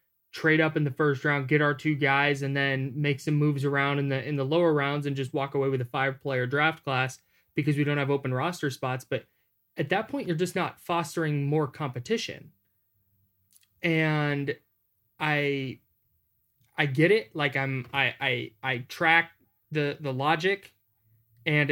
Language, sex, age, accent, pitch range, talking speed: English, male, 20-39, American, 135-160 Hz, 175 wpm